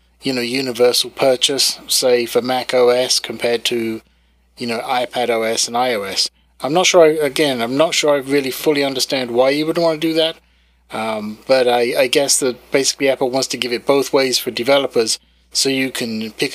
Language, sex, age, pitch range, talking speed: English, male, 30-49, 120-145 Hz, 195 wpm